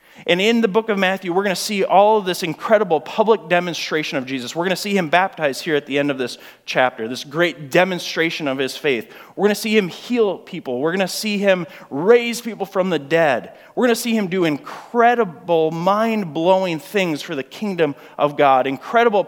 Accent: American